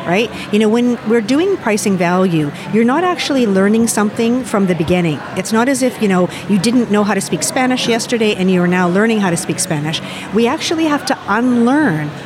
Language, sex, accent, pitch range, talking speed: English, female, American, 185-240 Hz, 210 wpm